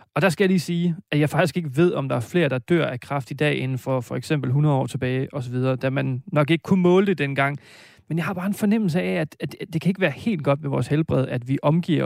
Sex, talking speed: male, 290 wpm